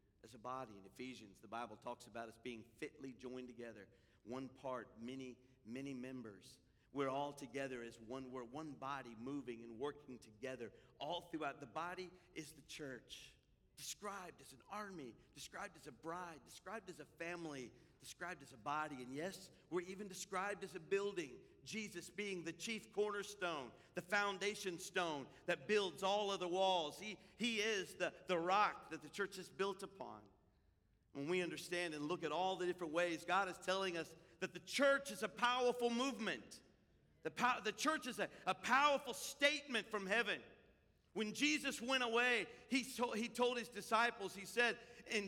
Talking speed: 175 wpm